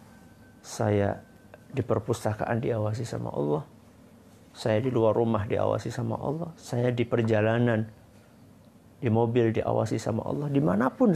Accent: native